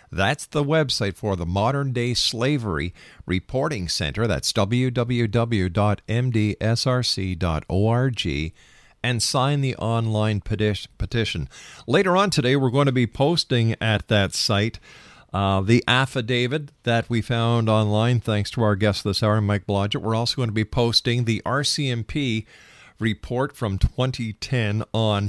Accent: American